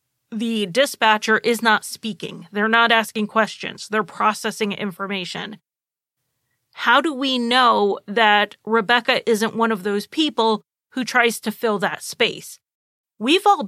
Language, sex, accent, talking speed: English, female, American, 135 wpm